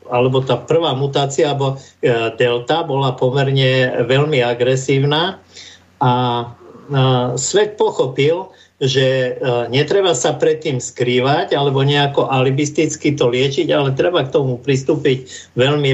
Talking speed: 115 wpm